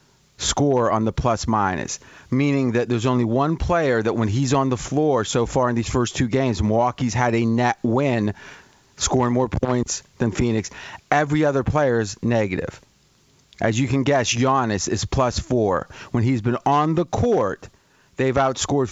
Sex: male